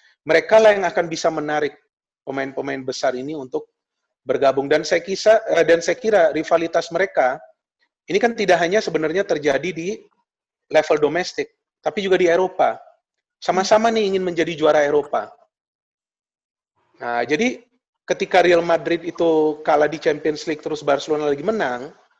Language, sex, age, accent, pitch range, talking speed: Indonesian, male, 30-49, native, 155-220 Hz, 140 wpm